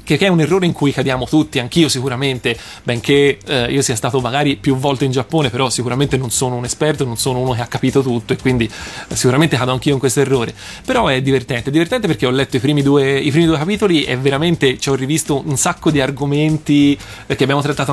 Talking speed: 220 wpm